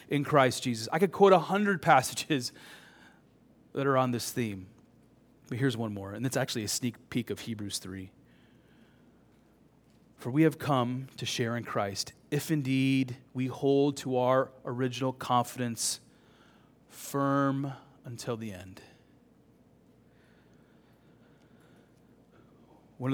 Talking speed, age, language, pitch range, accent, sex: 125 wpm, 30-49, English, 110-130 Hz, American, male